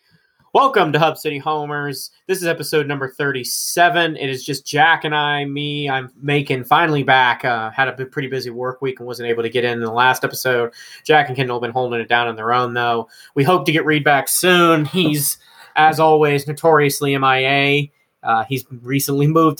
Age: 20-39